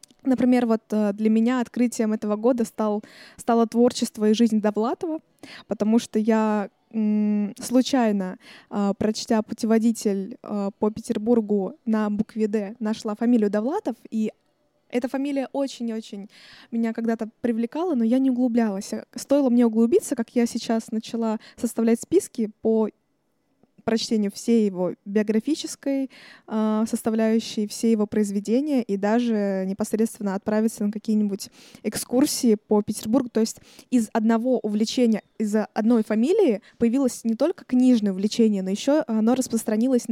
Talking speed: 125 wpm